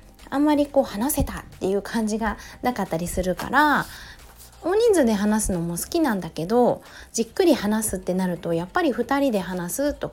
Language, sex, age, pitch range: Japanese, female, 20-39, 190-275 Hz